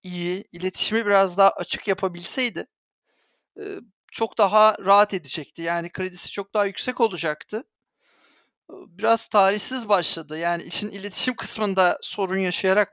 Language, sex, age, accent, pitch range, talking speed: Turkish, male, 40-59, native, 180-225 Hz, 115 wpm